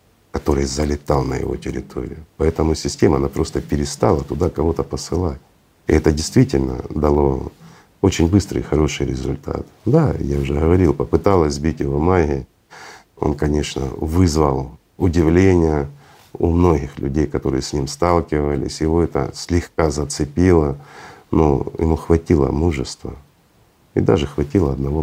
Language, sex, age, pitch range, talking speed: Russian, male, 50-69, 70-80 Hz, 125 wpm